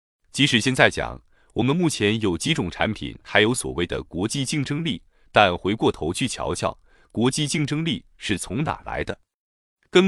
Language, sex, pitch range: Chinese, male, 100-140 Hz